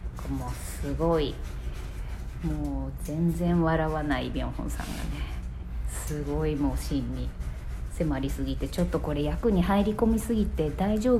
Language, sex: Japanese, female